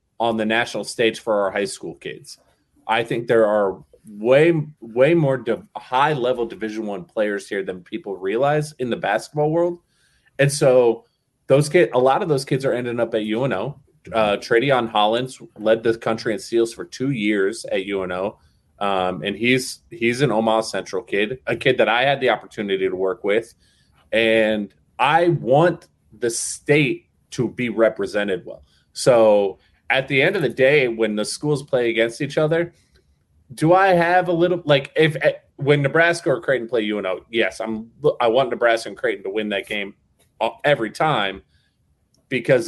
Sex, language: male, English